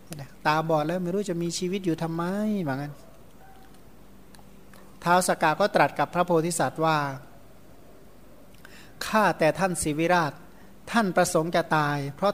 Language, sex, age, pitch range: Thai, male, 60-79, 160-190 Hz